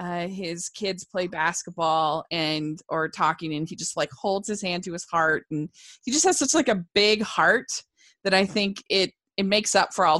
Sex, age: female, 20-39